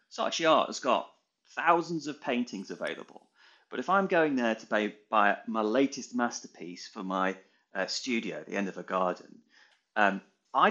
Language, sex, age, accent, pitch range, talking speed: English, male, 30-49, British, 95-130 Hz, 175 wpm